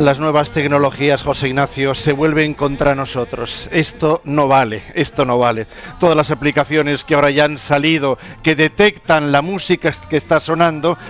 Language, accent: Spanish, Spanish